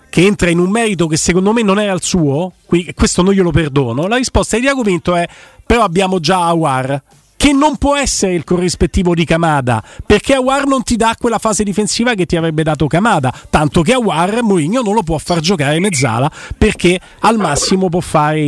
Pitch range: 155-195 Hz